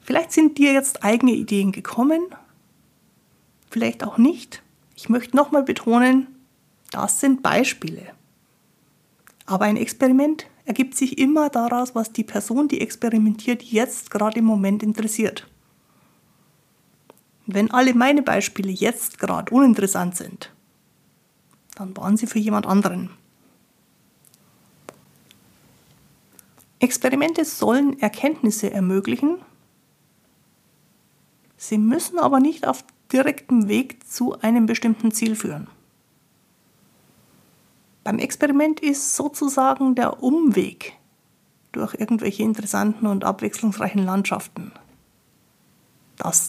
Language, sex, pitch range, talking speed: German, female, 210-270 Hz, 100 wpm